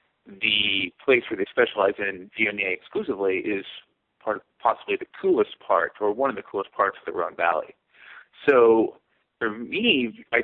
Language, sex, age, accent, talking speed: English, male, 30-49, American, 165 wpm